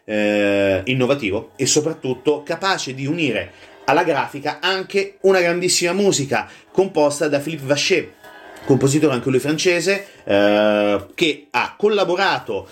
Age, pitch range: 30-49, 120-170 Hz